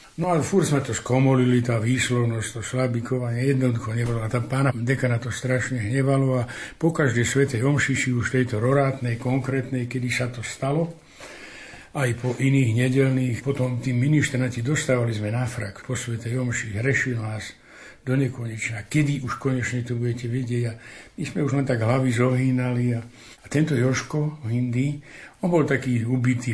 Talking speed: 165 wpm